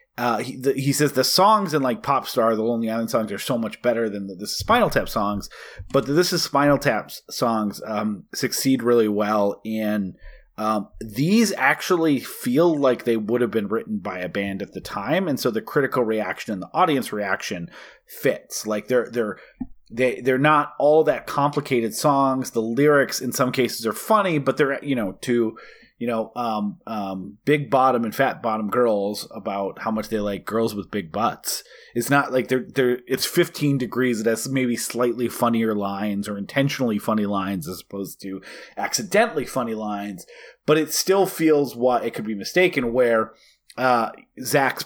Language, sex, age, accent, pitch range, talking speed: English, male, 30-49, American, 110-140 Hz, 185 wpm